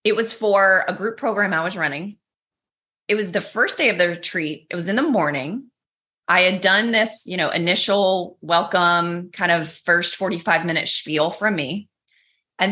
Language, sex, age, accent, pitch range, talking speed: English, female, 30-49, American, 165-215 Hz, 180 wpm